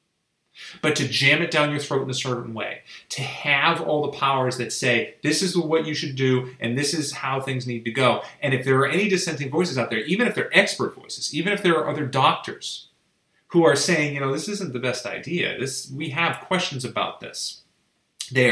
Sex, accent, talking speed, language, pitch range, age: male, American, 225 wpm, English, 120-150 Hz, 30-49